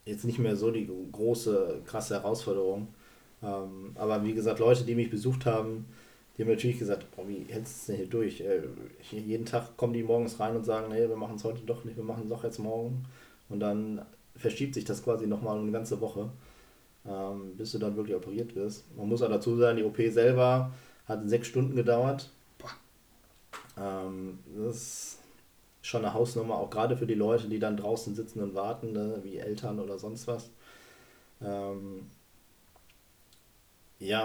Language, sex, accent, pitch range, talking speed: German, male, German, 105-120 Hz, 180 wpm